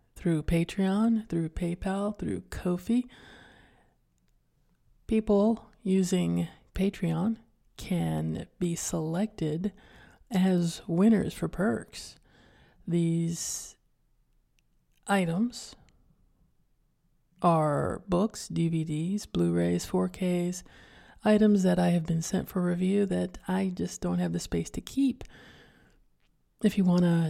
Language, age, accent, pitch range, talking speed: English, 30-49, American, 160-200 Hz, 95 wpm